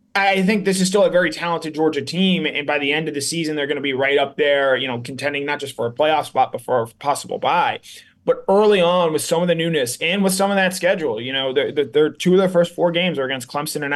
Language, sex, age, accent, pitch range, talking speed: English, male, 20-39, American, 140-170 Hz, 285 wpm